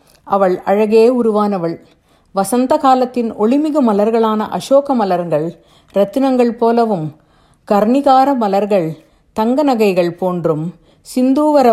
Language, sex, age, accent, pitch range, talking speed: Tamil, female, 50-69, native, 185-255 Hz, 80 wpm